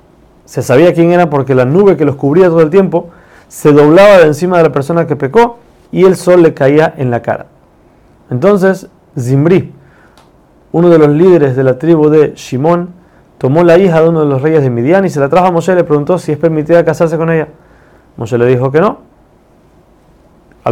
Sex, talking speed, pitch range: male, 210 wpm, 140-170 Hz